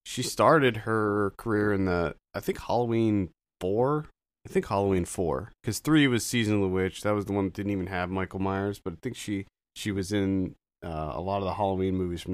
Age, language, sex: 30-49, English, male